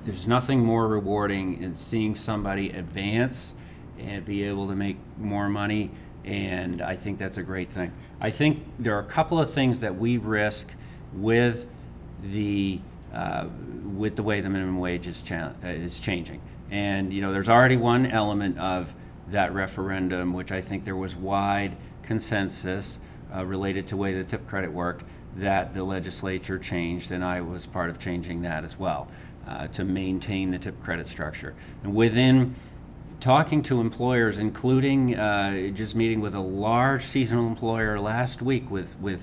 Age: 50-69